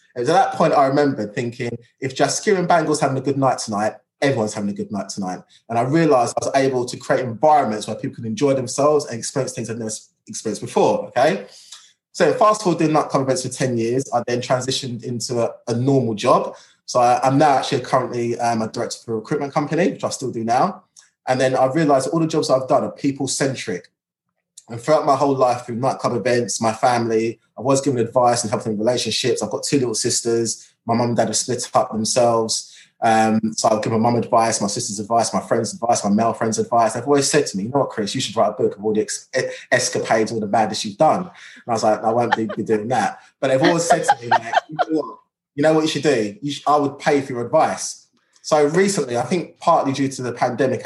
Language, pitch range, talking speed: English, 115-140 Hz, 245 wpm